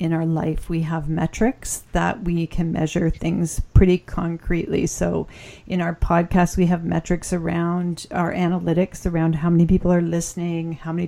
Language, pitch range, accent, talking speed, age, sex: English, 165-185 Hz, American, 170 wpm, 40-59, female